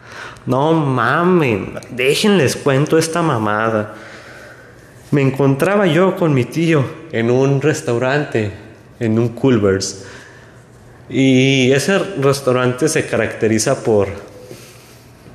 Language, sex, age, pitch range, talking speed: Spanish, male, 20-39, 100-130 Hz, 95 wpm